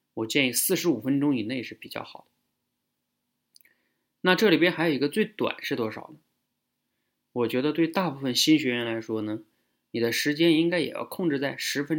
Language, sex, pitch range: Chinese, male, 115-170 Hz